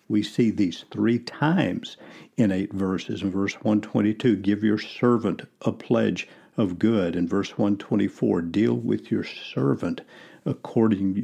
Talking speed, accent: 140 wpm, American